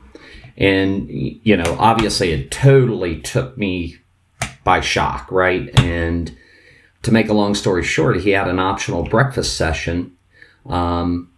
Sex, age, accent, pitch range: male, 40-59, American, 80-100 Hz